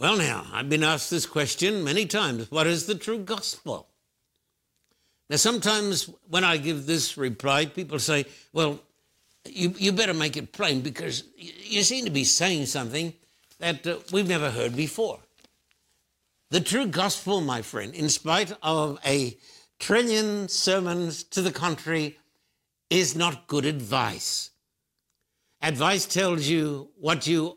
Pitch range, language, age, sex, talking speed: 150-195 Hz, English, 60-79, male, 145 wpm